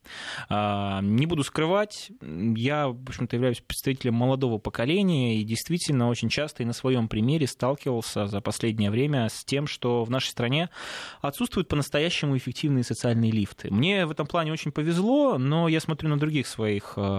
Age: 20-39